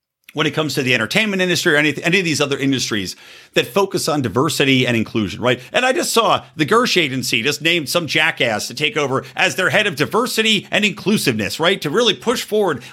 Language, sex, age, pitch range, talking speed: English, male, 50-69, 135-195 Hz, 220 wpm